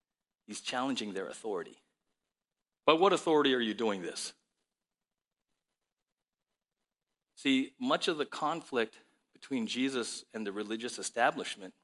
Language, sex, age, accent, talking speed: English, male, 40-59, American, 110 wpm